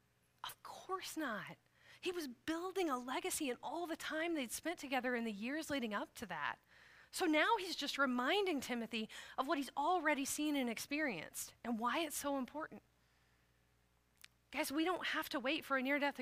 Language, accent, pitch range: English, American, 210-290 Hz